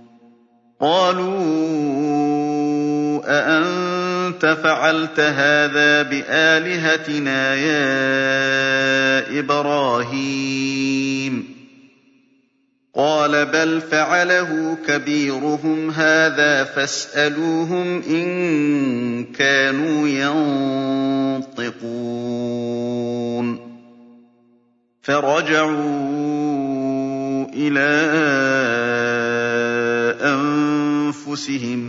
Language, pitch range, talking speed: Arabic, 120-150 Hz, 35 wpm